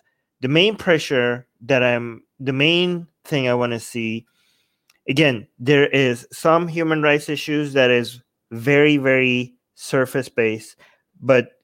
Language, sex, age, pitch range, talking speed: English, male, 30-49, 120-145 Hz, 130 wpm